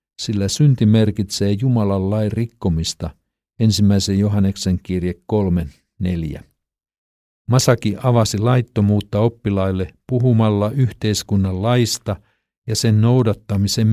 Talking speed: 90 wpm